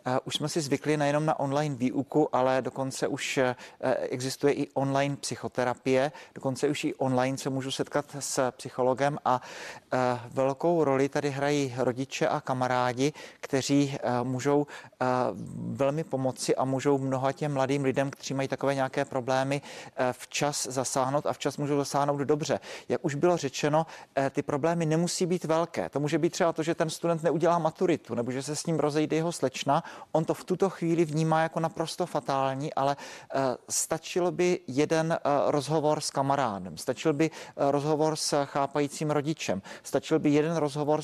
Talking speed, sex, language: 155 wpm, male, Czech